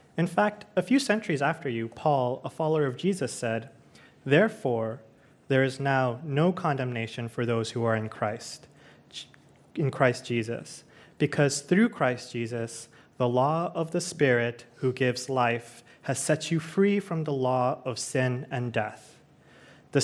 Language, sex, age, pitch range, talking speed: English, male, 30-49, 125-165 Hz, 155 wpm